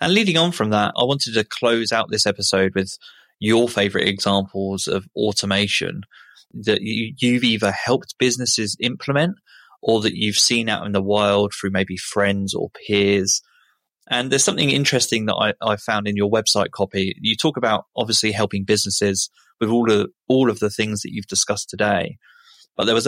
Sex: male